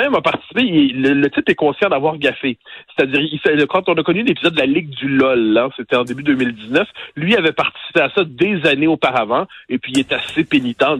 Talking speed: 225 wpm